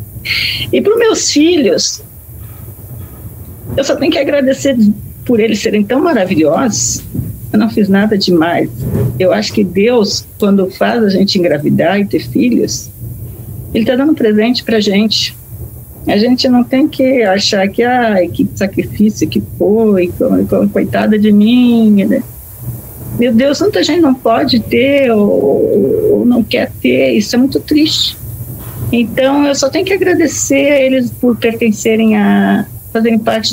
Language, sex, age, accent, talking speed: Portuguese, female, 50-69, Brazilian, 150 wpm